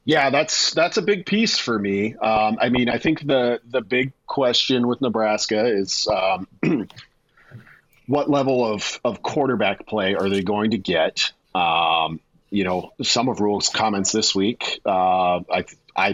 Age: 40-59